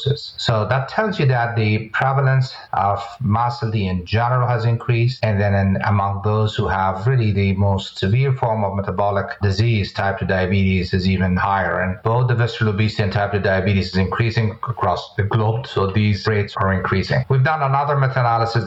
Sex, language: male, English